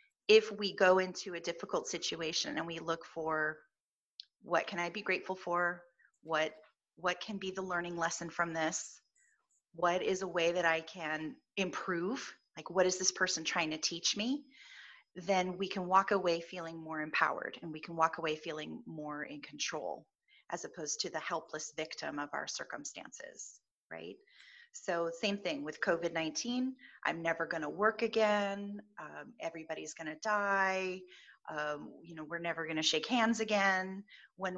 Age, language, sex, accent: 30-49, English, female, American